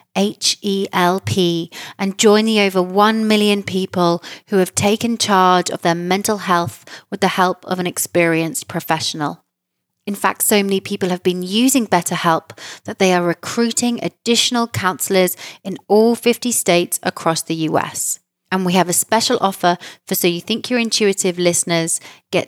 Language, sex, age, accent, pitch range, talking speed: English, female, 30-49, British, 170-205 Hz, 160 wpm